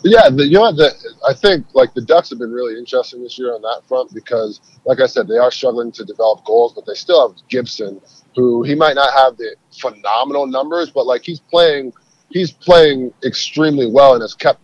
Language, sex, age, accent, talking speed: English, male, 30-49, American, 215 wpm